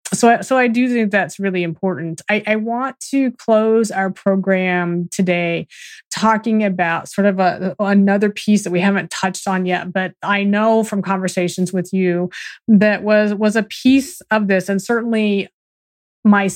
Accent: American